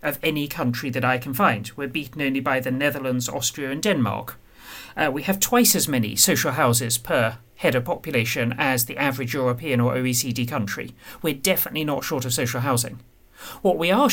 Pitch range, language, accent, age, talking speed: 125-180 Hz, English, British, 40-59, 190 wpm